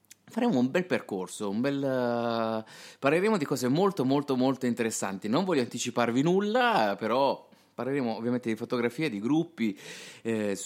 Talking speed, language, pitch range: 140 wpm, Italian, 110-175 Hz